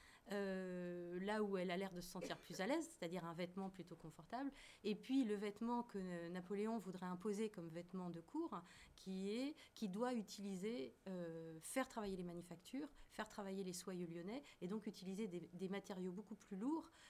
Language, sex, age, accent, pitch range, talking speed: French, female, 30-49, French, 175-230 Hz, 195 wpm